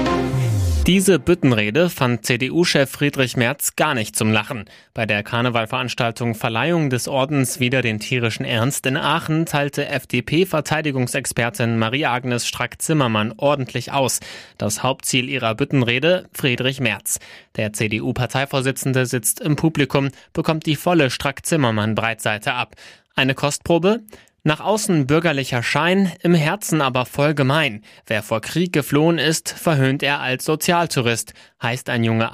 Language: German